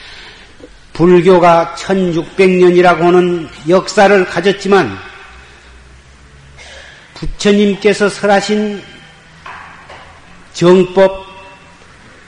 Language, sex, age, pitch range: Korean, male, 40-59, 155-205 Hz